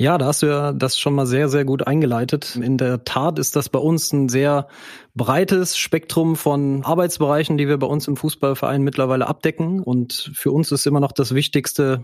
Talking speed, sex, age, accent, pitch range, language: 205 wpm, male, 20-39, German, 135-155 Hz, German